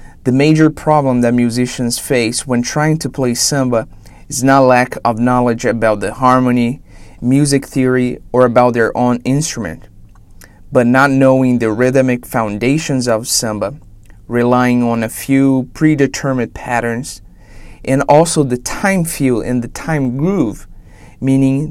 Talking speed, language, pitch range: 140 wpm, English, 115-140 Hz